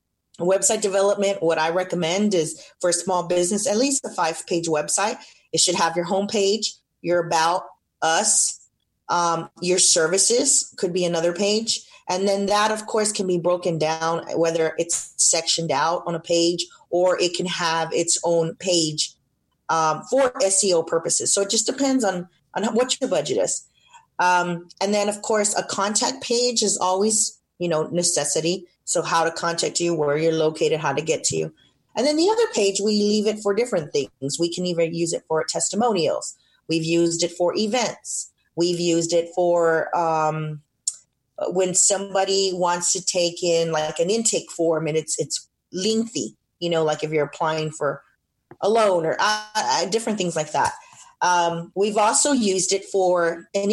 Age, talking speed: 30-49, 175 wpm